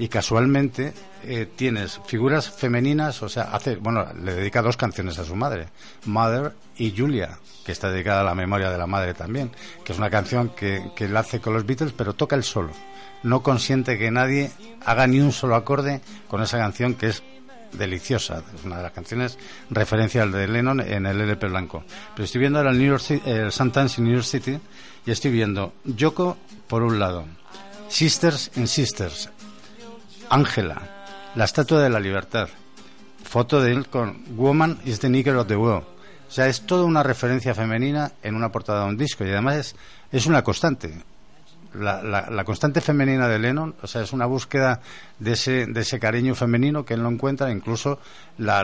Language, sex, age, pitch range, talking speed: Spanish, male, 60-79, 105-135 Hz, 190 wpm